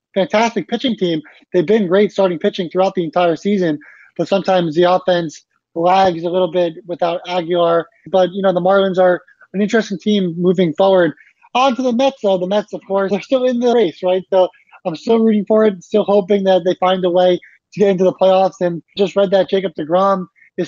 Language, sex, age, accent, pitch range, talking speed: English, male, 20-39, American, 175-195 Hz, 210 wpm